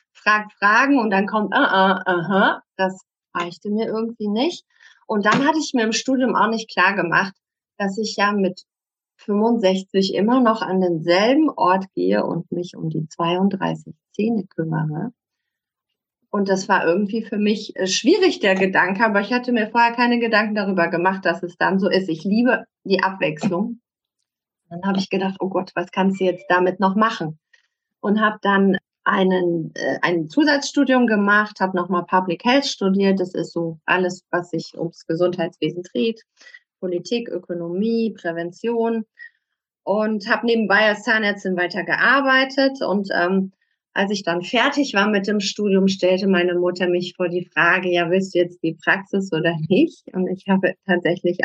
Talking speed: 165 wpm